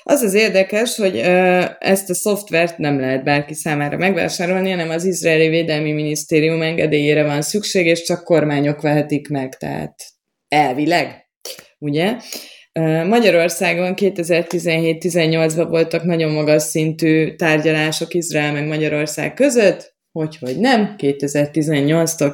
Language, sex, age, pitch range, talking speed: Hungarian, female, 20-39, 150-185 Hz, 115 wpm